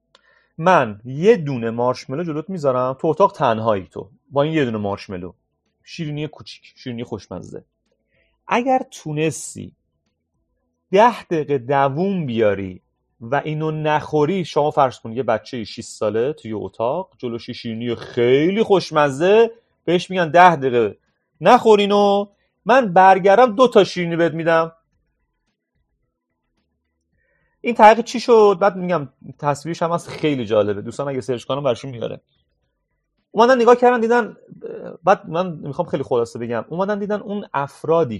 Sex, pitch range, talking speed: male, 115-180 Hz, 130 wpm